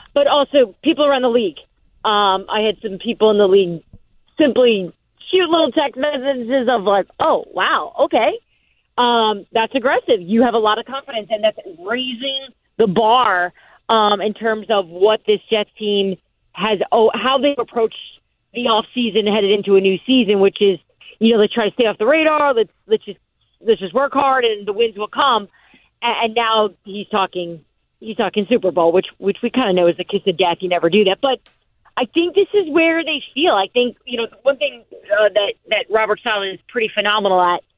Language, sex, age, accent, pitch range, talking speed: English, female, 40-59, American, 195-250 Hz, 205 wpm